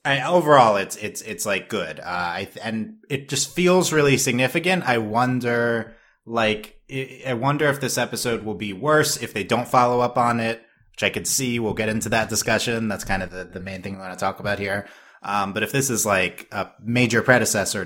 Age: 30-49